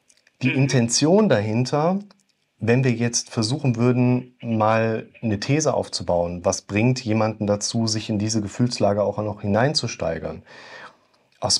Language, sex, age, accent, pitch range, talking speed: German, male, 30-49, German, 110-130 Hz, 125 wpm